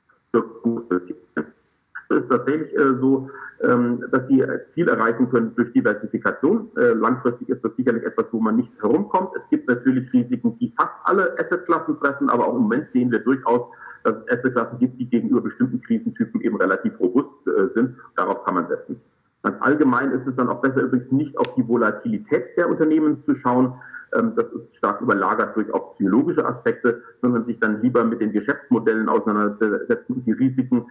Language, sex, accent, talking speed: German, male, German, 165 wpm